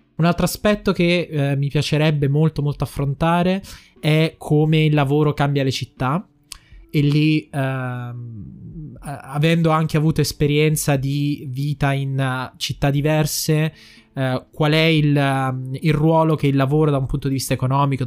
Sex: male